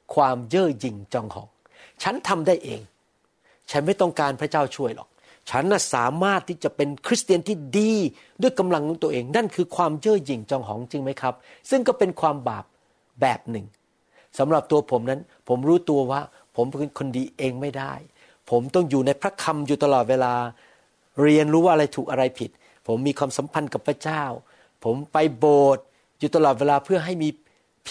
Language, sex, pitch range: Thai, male, 135-180 Hz